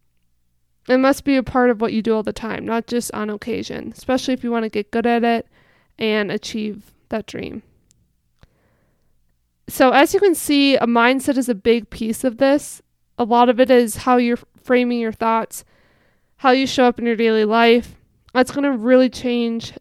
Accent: American